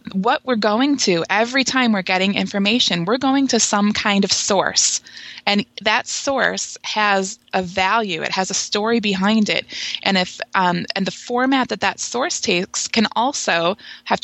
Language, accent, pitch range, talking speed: English, American, 185-220 Hz, 175 wpm